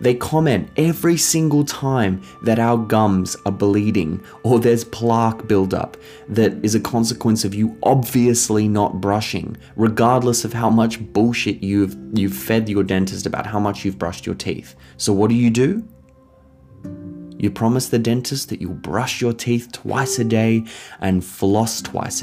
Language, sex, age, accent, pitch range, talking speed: English, male, 20-39, Australian, 95-120 Hz, 160 wpm